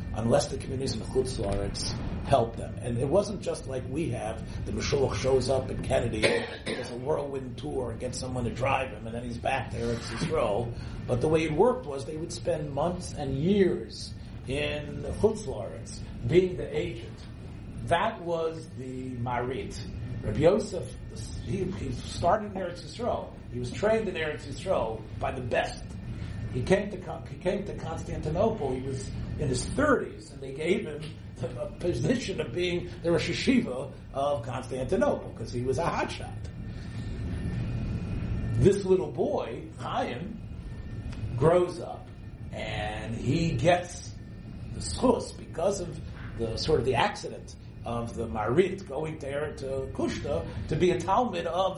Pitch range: 110-160 Hz